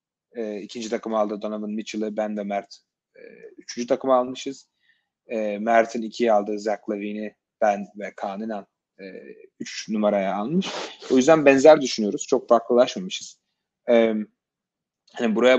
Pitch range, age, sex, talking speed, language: 105-125 Hz, 30-49, male, 130 wpm, Turkish